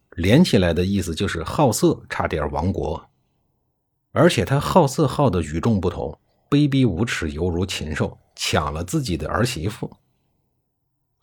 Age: 50-69